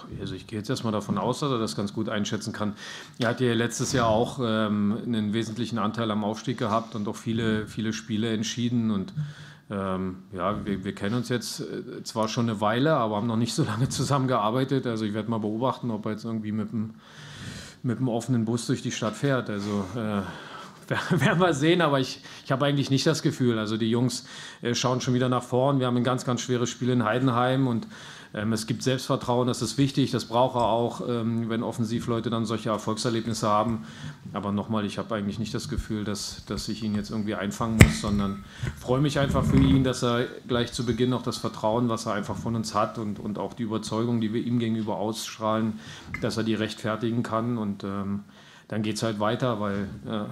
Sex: male